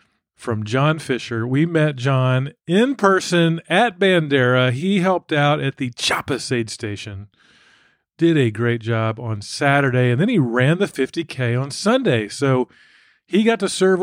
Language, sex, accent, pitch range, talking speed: English, male, American, 120-165 Hz, 160 wpm